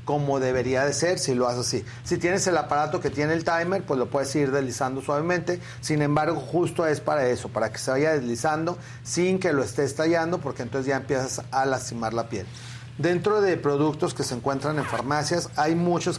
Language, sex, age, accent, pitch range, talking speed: Spanish, male, 40-59, Mexican, 130-155 Hz, 210 wpm